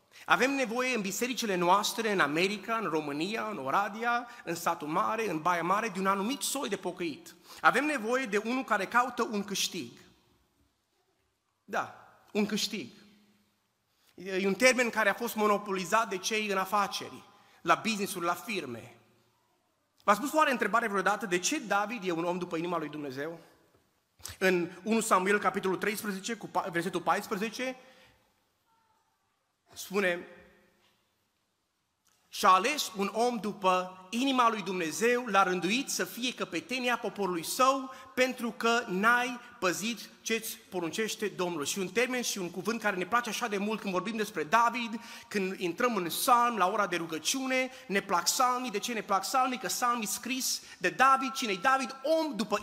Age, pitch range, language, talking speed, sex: 30-49, 185-245 Hz, Romanian, 155 wpm, male